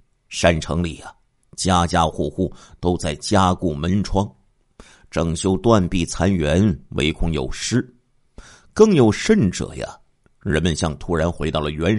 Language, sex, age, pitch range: Chinese, male, 50-69, 80-115 Hz